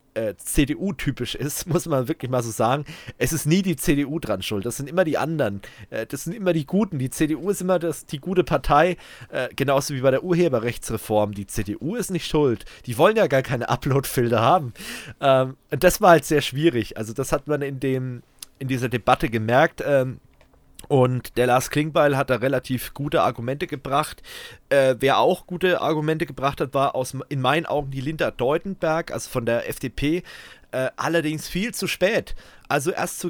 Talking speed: 195 wpm